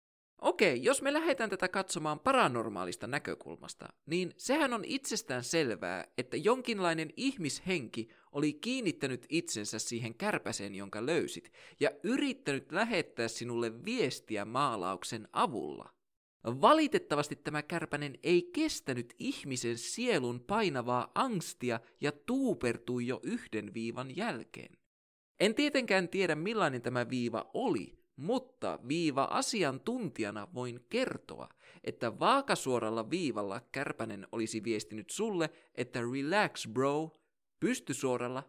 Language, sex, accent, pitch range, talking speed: Finnish, male, native, 120-175 Hz, 105 wpm